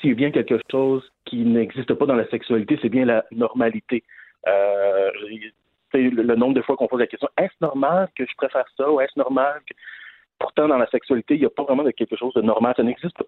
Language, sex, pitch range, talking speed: French, male, 115-140 Hz, 235 wpm